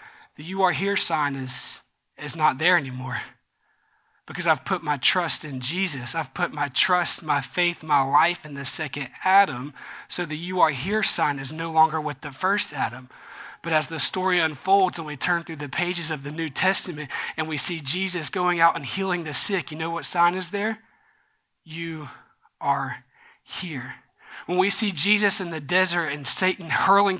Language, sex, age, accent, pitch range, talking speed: English, male, 20-39, American, 155-185 Hz, 190 wpm